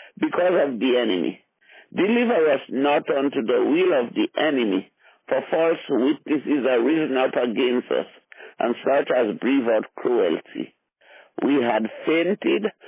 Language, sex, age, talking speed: English, male, 50-69, 140 wpm